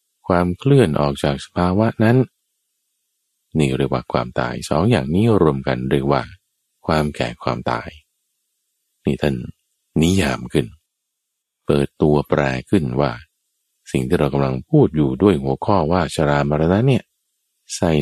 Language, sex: Thai, male